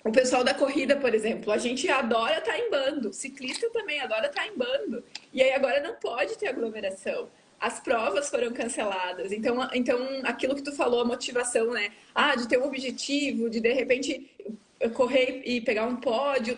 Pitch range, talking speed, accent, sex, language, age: 225-280 Hz, 185 wpm, Brazilian, female, Portuguese, 20-39